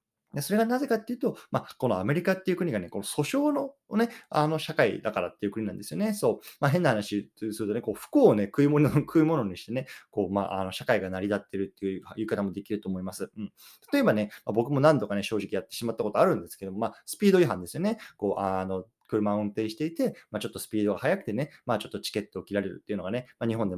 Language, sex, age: Japanese, male, 20-39